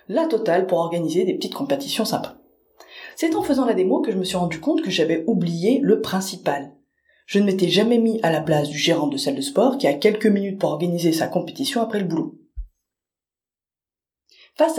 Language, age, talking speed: French, 20-39, 205 wpm